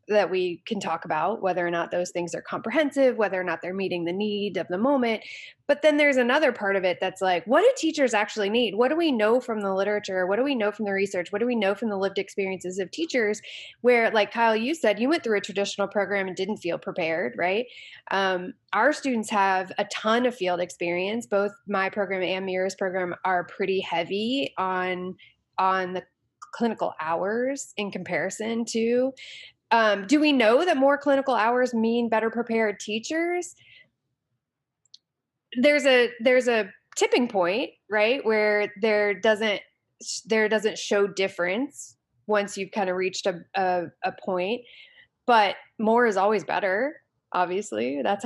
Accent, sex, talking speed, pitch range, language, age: American, female, 180 wpm, 185-235 Hz, English, 20-39